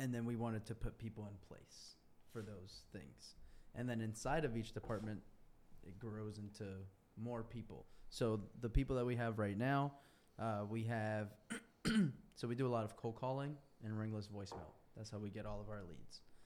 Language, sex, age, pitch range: English, male, 20-39, 105-120 Hz